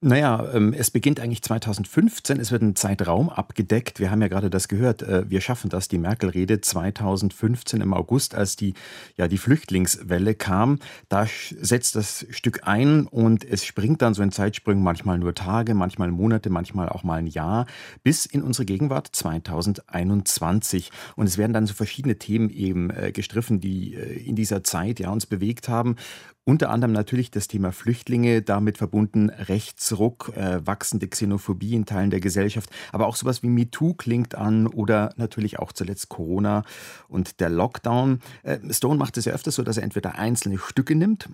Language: German